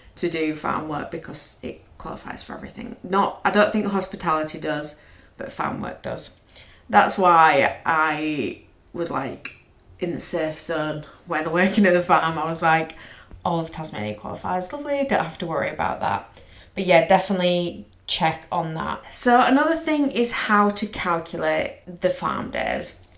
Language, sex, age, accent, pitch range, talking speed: English, female, 30-49, British, 160-195 Hz, 165 wpm